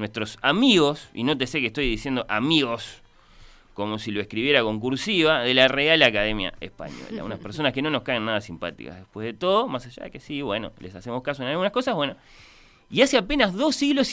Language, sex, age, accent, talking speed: Spanish, male, 30-49, Argentinian, 210 wpm